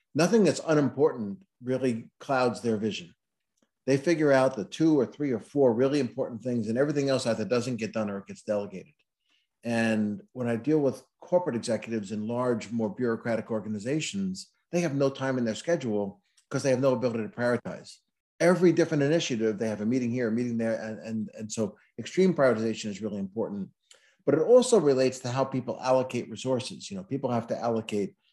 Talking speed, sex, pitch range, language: 195 wpm, male, 110-135 Hz, English